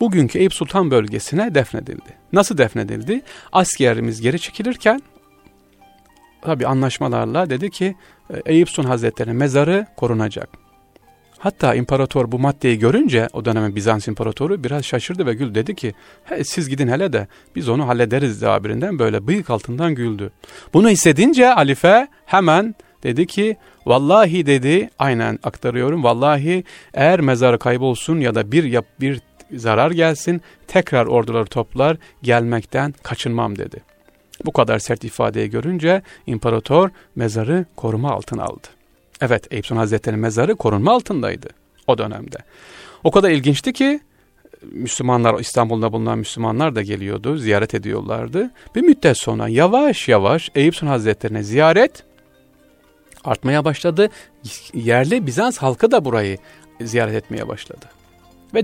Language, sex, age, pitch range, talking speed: Turkish, male, 40-59, 115-170 Hz, 125 wpm